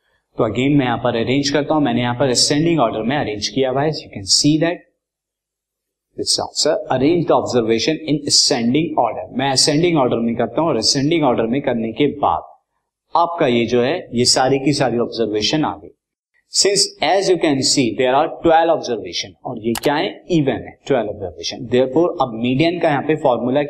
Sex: male